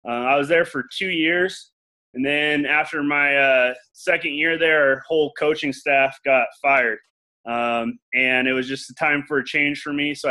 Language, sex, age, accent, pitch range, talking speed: English, male, 20-39, American, 130-155 Hz, 200 wpm